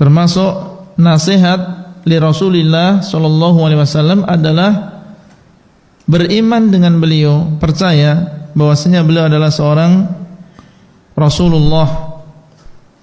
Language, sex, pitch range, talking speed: Indonesian, male, 155-175 Hz, 75 wpm